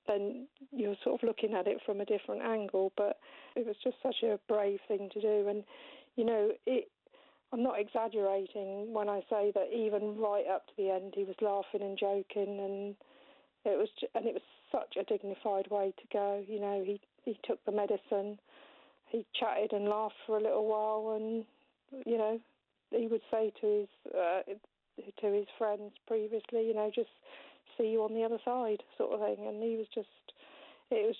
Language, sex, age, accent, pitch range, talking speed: English, female, 50-69, British, 200-230 Hz, 195 wpm